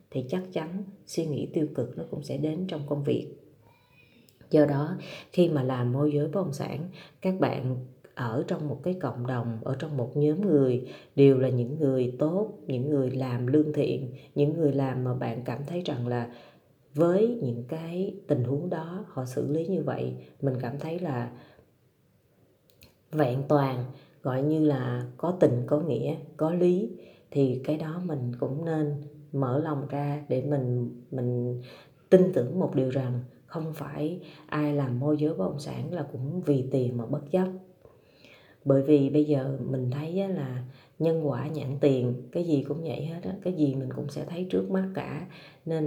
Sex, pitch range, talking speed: female, 130-155 Hz, 185 wpm